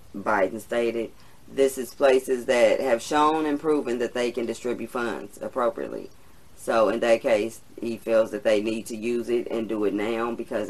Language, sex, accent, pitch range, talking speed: English, female, American, 105-125 Hz, 185 wpm